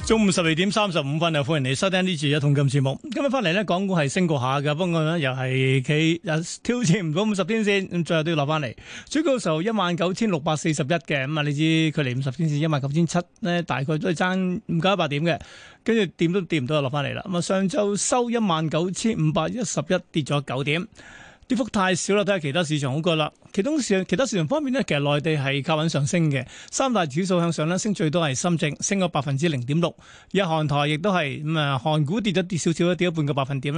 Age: 30-49